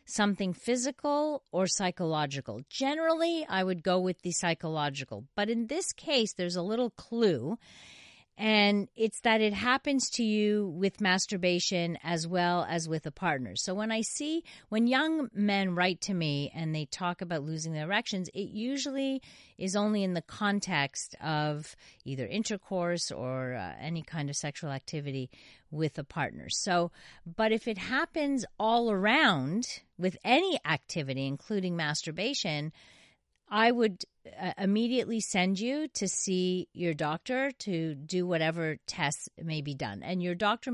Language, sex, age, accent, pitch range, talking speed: English, female, 40-59, American, 155-210 Hz, 150 wpm